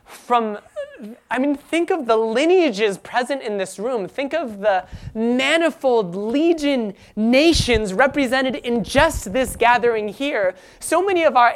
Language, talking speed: English, 140 wpm